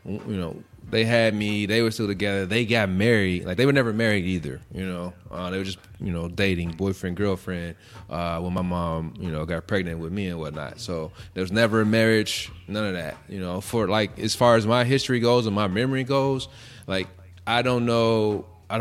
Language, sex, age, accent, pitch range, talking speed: English, male, 20-39, American, 95-120 Hz, 220 wpm